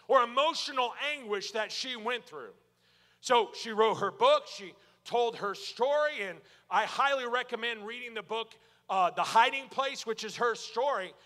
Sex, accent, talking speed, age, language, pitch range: male, American, 165 wpm, 40-59, English, 215-270 Hz